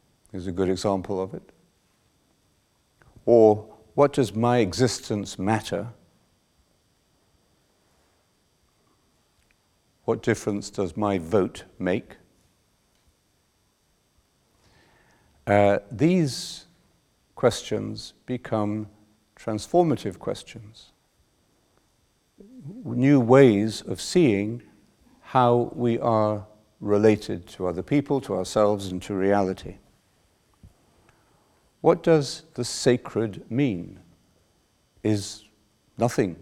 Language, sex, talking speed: English, male, 75 wpm